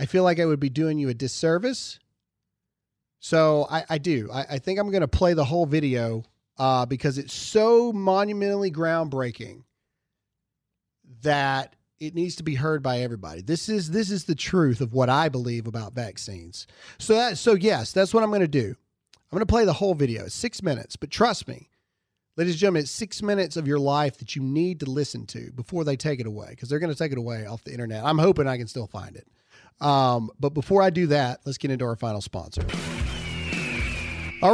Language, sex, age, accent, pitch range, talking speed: English, male, 30-49, American, 130-190 Hz, 215 wpm